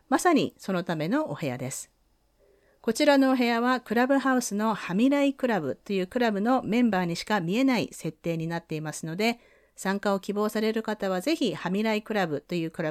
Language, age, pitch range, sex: Japanese, 40-59, 170-245 Hz, female